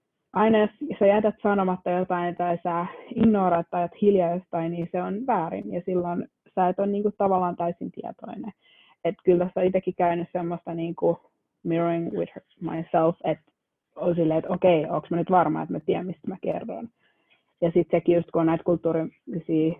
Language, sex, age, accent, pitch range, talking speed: Finnish, female, 20-39, native, 170-195 Hz, 180 wpm